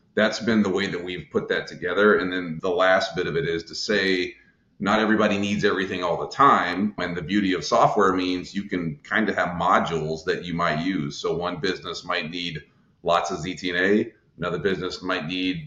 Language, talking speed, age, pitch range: English, 205 wpm, 40-59, 85-95 Hz